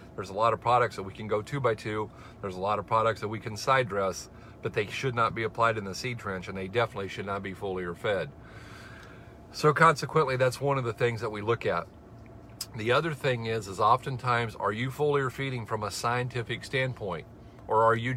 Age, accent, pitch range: 50-69, American, 110-130 Hz